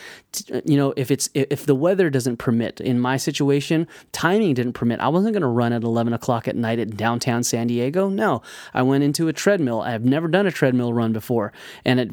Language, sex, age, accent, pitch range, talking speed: English, male, 30-49, American, 120-145 Hz, 220 wpm